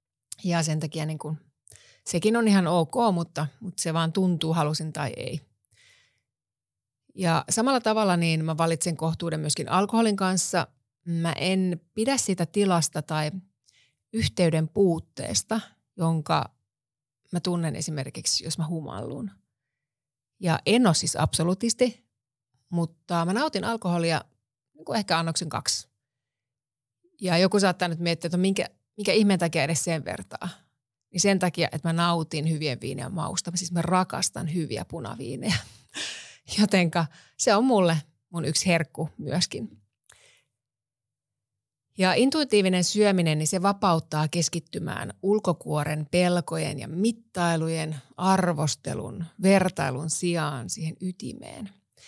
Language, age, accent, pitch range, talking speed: Finnish, 30-49, native, 150-185 Hz, 125 wpm